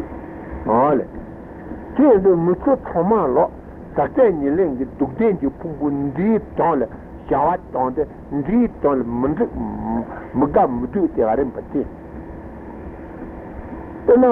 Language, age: Italian, 60-79